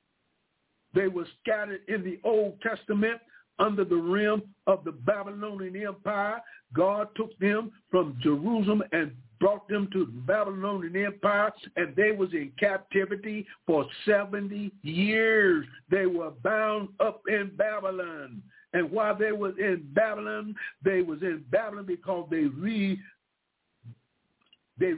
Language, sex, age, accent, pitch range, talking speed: English, male, 60-79, American, 175-210 Hz, 130 wpm